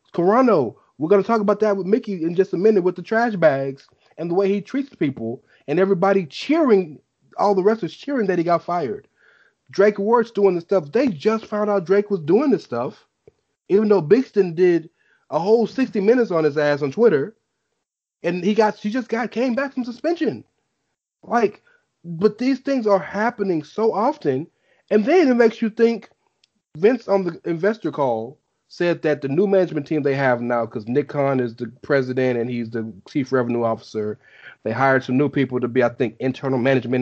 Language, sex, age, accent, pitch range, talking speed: English, male, 30-49, American, 150-230 Hz, 200 wpm